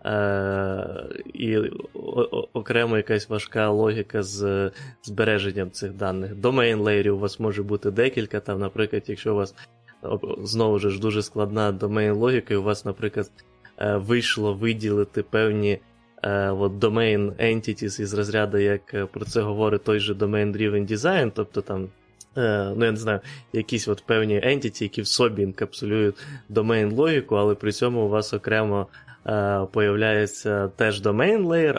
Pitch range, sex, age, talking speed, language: 100-115 Hz, male, 20-39, 135 wpm, Ukrainian